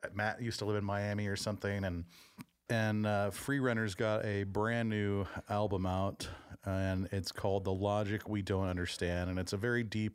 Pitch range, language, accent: 95-110 Hz, English, American